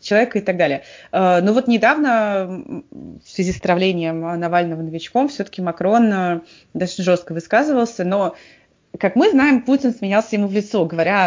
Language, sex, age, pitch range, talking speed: English, female, 20-39, 175-225 Hz, 150 wpm